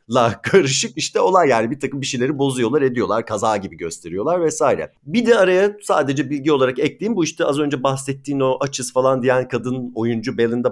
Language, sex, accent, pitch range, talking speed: Turkish, male, native, 115-160 Hz, 190 wpm